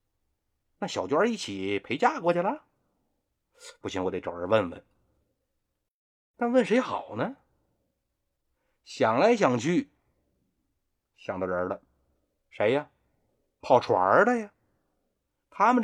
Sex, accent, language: male, native, Chinese